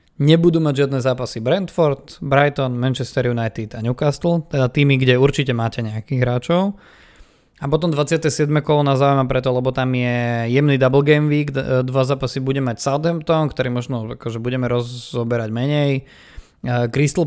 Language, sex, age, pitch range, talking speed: Slovak, male, 20-39, 120-150 Hz, 145 wpm